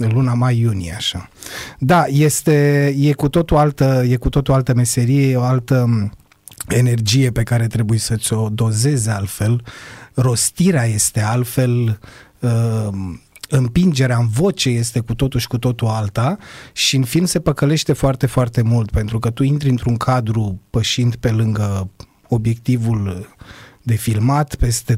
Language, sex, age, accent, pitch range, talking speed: Romanian, male, 30-49, native, 110-135 Hz, 145 wpm